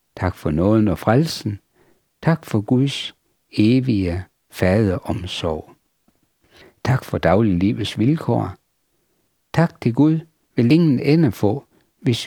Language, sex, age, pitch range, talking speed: Danish, male, 60-79, 95-135 Hz, 110 wpm